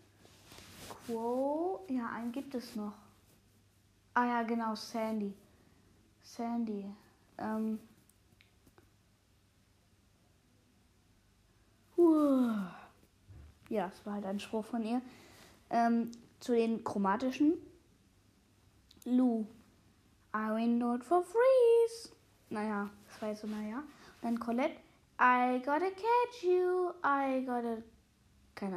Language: German